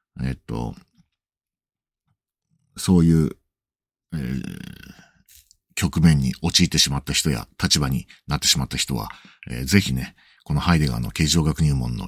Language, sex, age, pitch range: Japanese, male, 50-69, 75-110 Hz